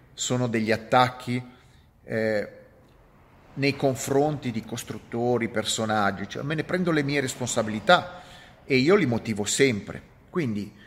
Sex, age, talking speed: male, 40-59, 120 wpm